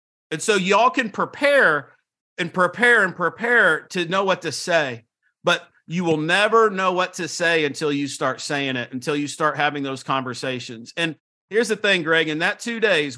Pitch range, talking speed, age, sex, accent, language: 150-190 Hz, 190 wpm, 40-59, male, American, English